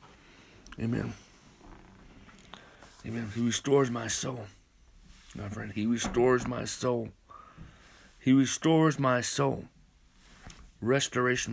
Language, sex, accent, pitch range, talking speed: English, male, American, 105-130 Hz, 90 wpm